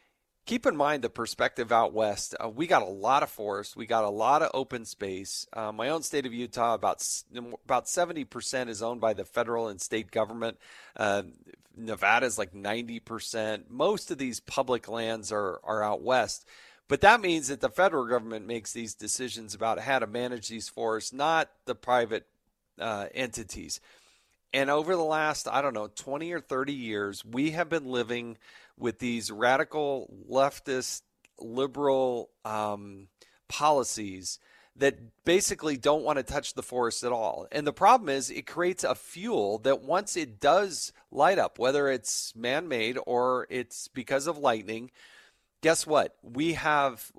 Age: 40-59